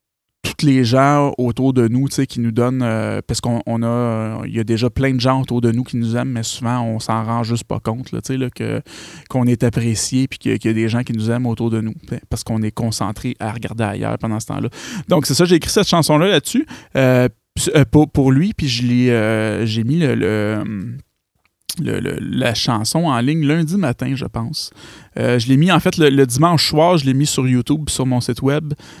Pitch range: 115-145 Hz